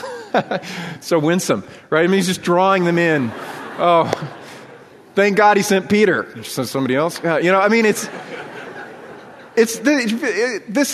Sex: male